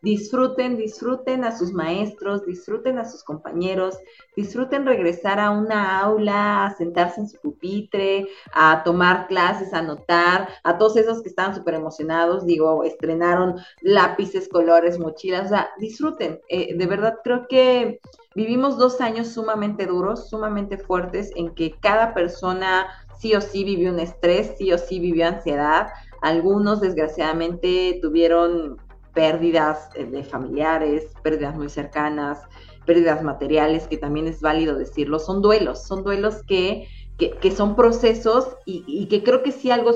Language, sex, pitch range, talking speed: Spanish, female, 170-225 Hz, 150 wpm